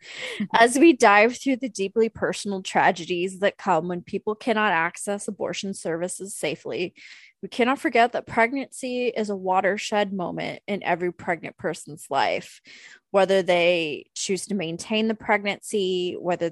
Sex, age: female, 20-39